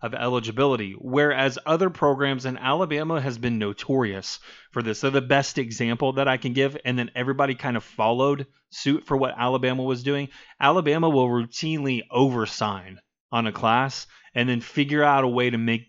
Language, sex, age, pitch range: English, male, 30-49, 115-145 Hz